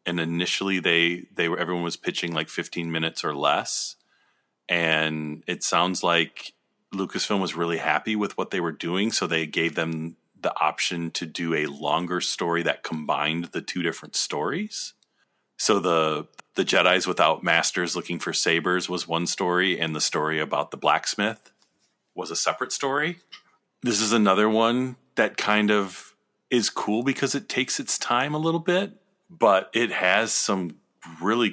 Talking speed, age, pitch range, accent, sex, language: 165 wpm, 30-49, 80-95 Hz, American, male, English